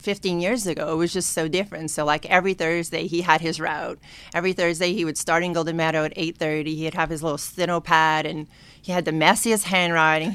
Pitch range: 160-205 Hz